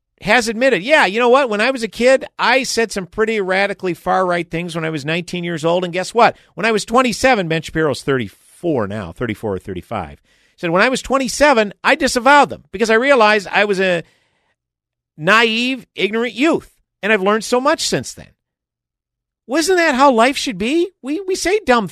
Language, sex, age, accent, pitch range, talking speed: English, male, 50-69, American, 130-220 Hz, 195 wpm